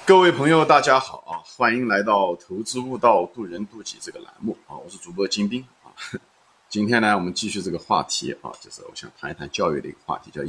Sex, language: male, Chinese